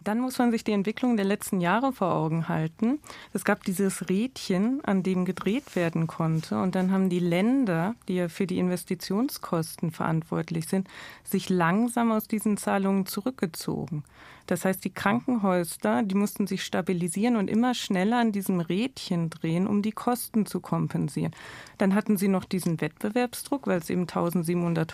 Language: German